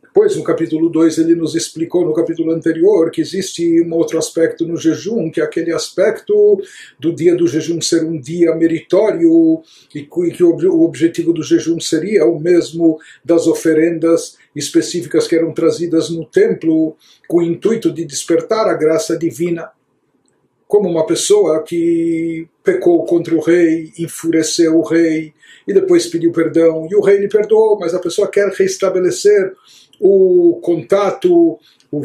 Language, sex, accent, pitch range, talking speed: Portuguese, male, Brazilian, 165-225 Hz, 155 wpm